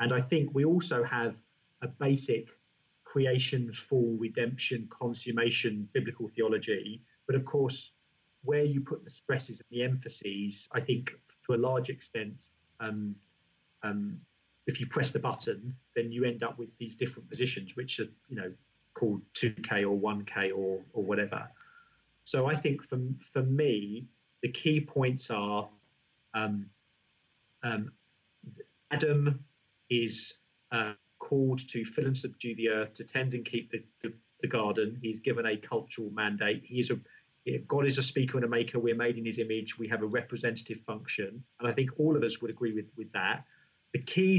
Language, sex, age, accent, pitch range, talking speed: English, male, 40-59, British, 110-130 Hz, 170 wpm